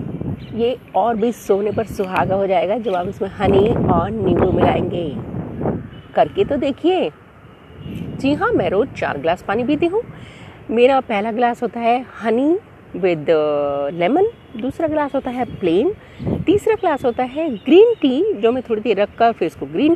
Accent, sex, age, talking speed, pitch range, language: native, female, 30-49, 160 wpm, 190-320 Hz, Hindi